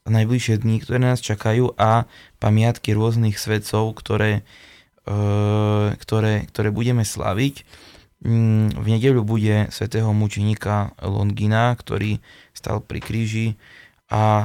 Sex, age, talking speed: male, 20-39, 110 wpm